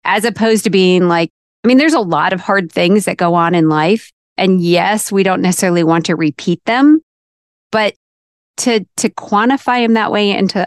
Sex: female